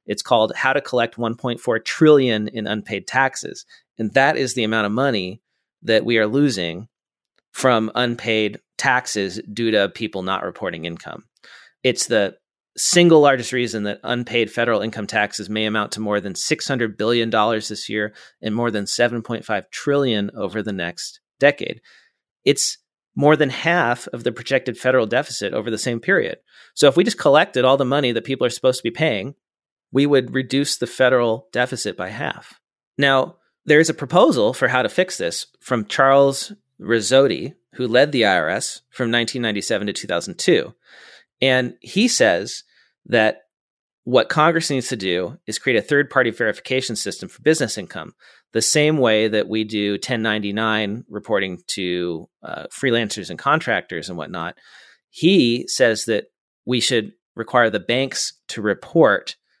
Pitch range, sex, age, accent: 110-135 Hz, male, 40-59, American